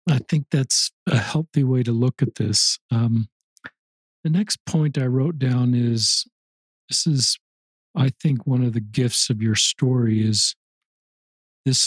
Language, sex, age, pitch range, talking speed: English, male, 40-59, 110-130 Hz, 155 wpm